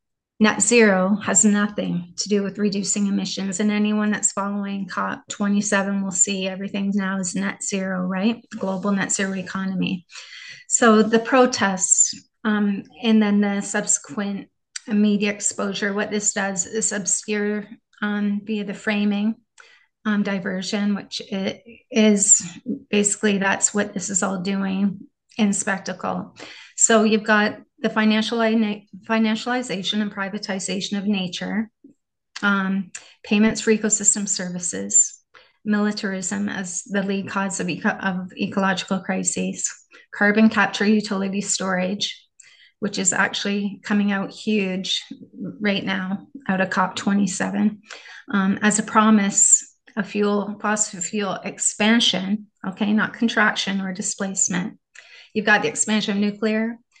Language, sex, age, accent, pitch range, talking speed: English, female, 30-49, American, 195-215 Hz, 125 wpm